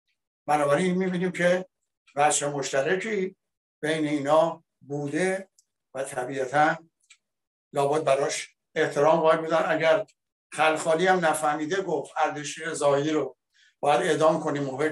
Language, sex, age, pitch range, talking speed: Persian, male, 60-79, 145-185 Hz, 110 wpm